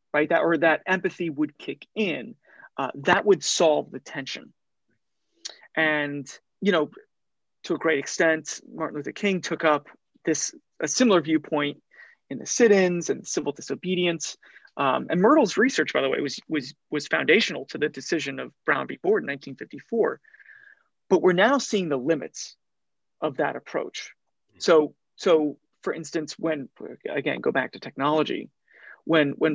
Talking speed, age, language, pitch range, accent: 155 wpm, 30-49, English, 150-210 Hz, American